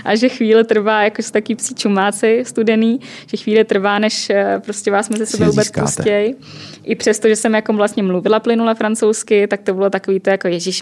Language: Czech